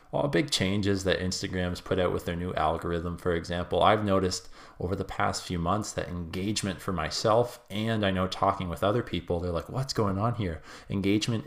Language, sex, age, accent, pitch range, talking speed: English, male, 20-39, American, 90-110 Hz, 200 wpm